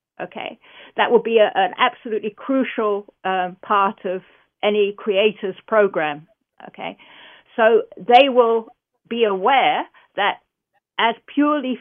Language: English